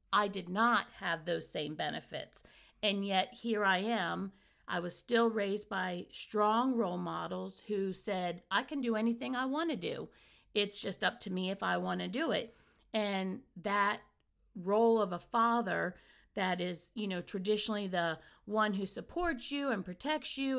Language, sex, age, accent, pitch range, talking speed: English, female, 50-69, American, 190-230 Hz, 175 wpm